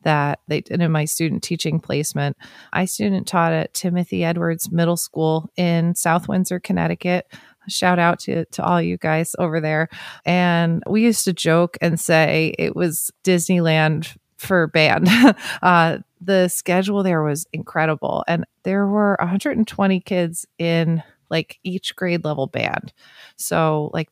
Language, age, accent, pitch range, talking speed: English, 30-49, American, 160-185 Hz, 150 wpm